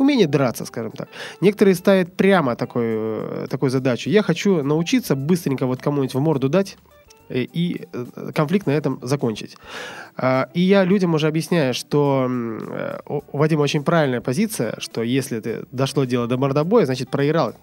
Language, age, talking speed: Russian, 20-39, 145 wpm